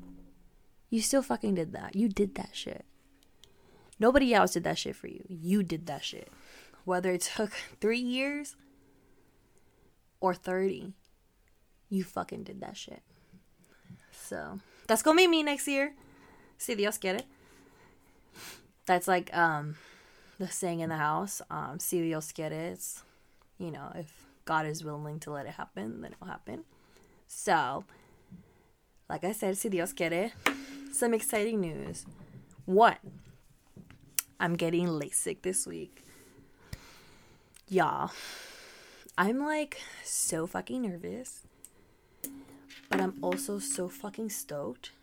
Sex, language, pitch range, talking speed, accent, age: female, English, 170-230 Hz, 130 wpm, American, 20-39